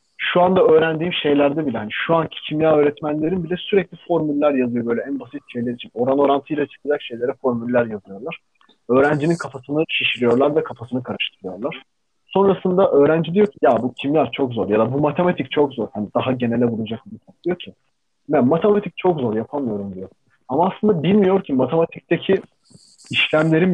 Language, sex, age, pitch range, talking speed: Turkish, male, 30-49, 135-180 Hz, 165 wpm